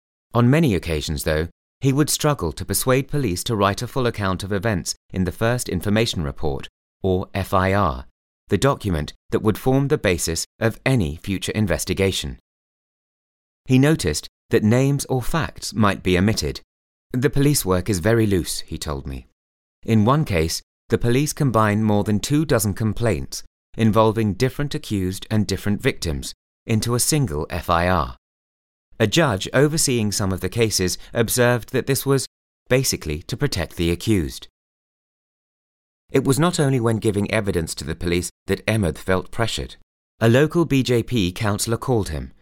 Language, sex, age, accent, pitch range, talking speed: English, male, 30-49, British, 85-115 Hz, 155 wpm